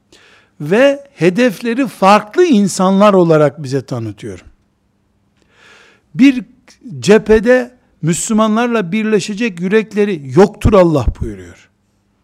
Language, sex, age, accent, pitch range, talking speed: Turkish, male, 60-79, native, 170-230 Hz, 75 wpm